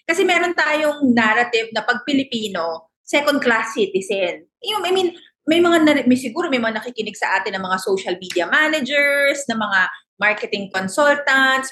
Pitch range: 210-290 Hz